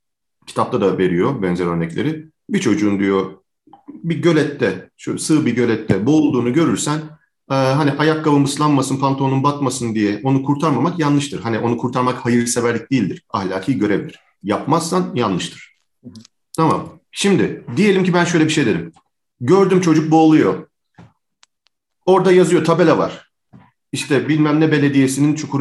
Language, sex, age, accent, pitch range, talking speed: Turkish, male, 40-59, native, 115-165 Hz, 130 wpm